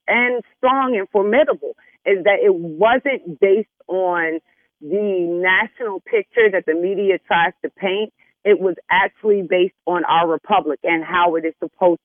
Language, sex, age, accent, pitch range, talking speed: English, female, 30-49, American, 175-230 Hz, 155 wpm